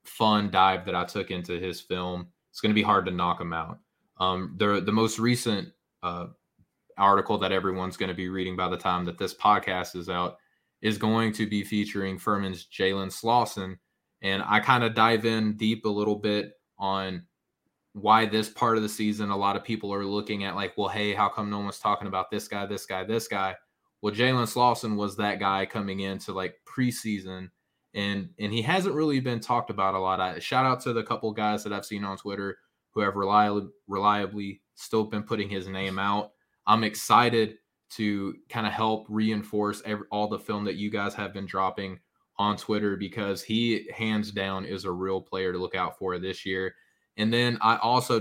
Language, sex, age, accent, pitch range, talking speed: English, male, 20-39, American, 95-110 Hz, 205 wpm